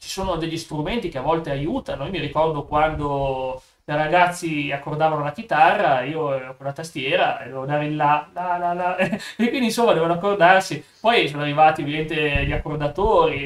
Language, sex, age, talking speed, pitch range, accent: Italian, male, 30-49, 175 wpm, 140-165 Hz, native